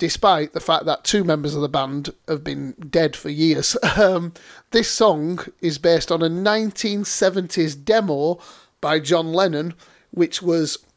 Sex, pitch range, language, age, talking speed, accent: male, 150-190 Hz, English, 30-49, 155 wpm, British